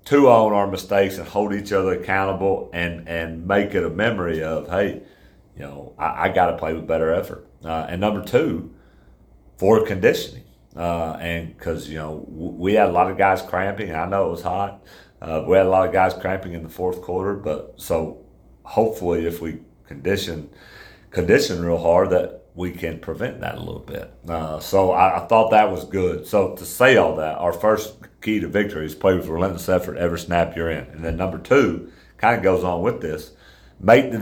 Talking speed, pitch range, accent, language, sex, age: 210 wpm, 80-100 Hz, American, English, male, 40-59